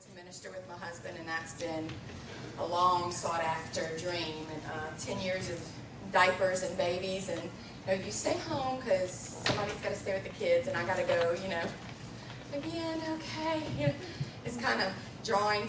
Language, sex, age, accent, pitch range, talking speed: English, female, 30-49, American, 155-185 Hz, 185 wpm